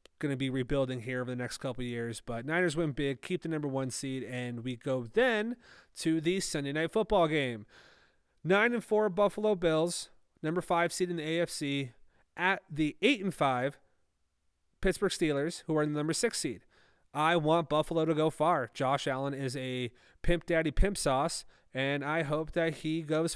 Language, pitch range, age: English, 130-170 Hz, 30-49